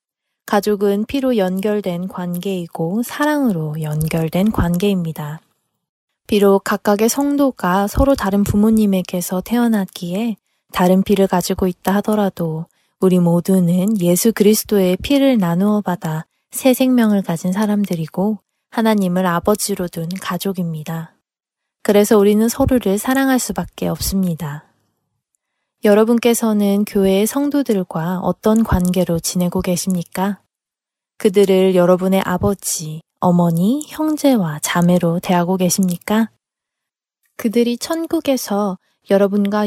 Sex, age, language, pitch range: female, 20-39, Korean, 180-215 Hz